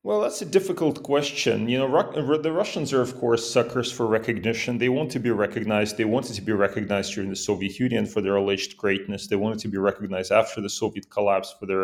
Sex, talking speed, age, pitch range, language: male, 225 wpm, 30-49, 100-120 Hz, English